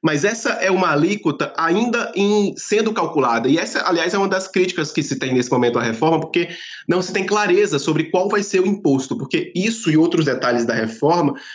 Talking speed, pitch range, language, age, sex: 210 wpm, 150-195 Hz, Portuguese, 20-39, male